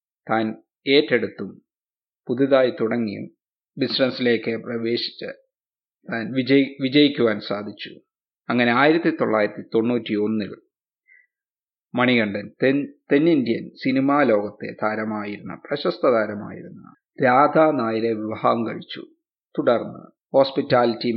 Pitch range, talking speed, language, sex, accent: 110-145 Hz, 50 wpm, Hindi, male, native